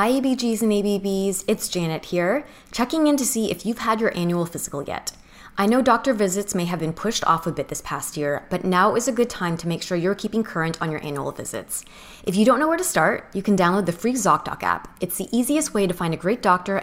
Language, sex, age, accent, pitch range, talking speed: English, female, 20-39, American, 175-235 Hz, 255 wpm